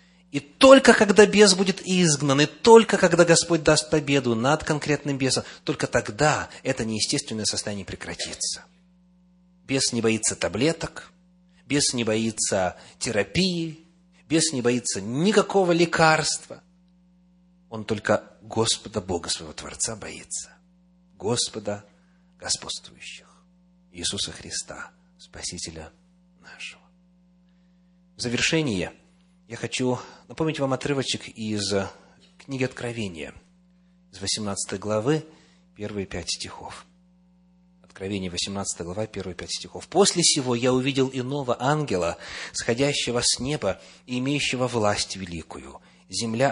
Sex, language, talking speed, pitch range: male, English, 105 wpm, 110-180 Hz